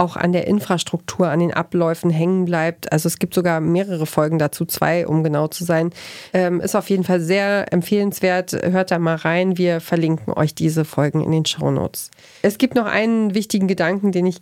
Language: German